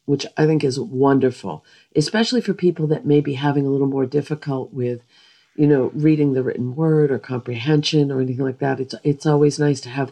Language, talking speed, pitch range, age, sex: English, 210 wpm, 125-150 Hz, 50-69, female